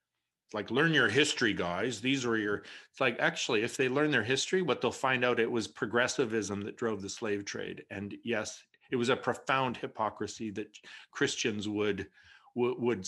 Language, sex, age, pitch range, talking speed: English, male, 50-69, 105-125 Hz, 180 wpm